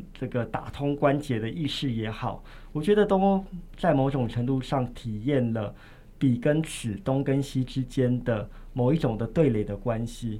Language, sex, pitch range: Chinese, male, 115-145 Hz